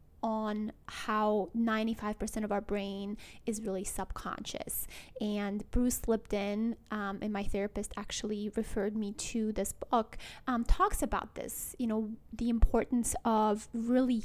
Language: English